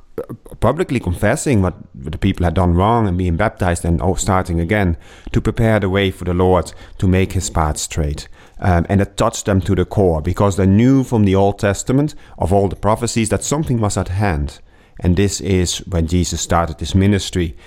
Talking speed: 195 wpm